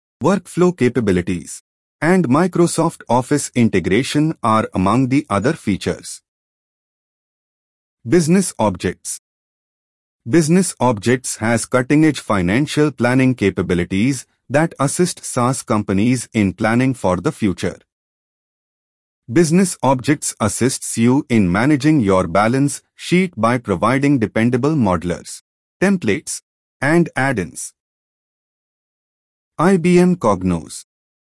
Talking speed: 90 wpm